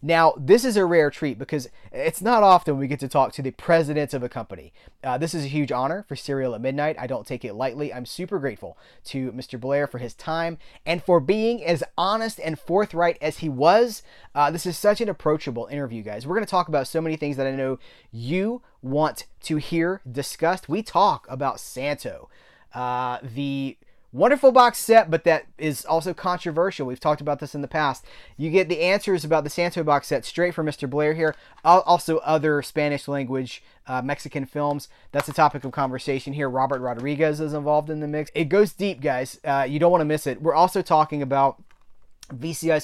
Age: 30-49